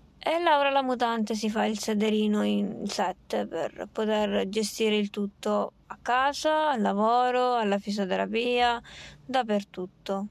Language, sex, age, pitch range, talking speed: Italian, female, 20-39, 210-235 Hz, 130 wpm